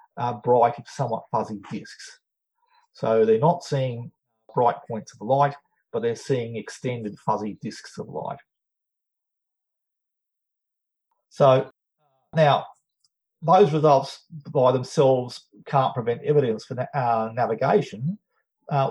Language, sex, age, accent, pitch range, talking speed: English, male, 40-59, Australian, 120-155 Hz, 110 wpm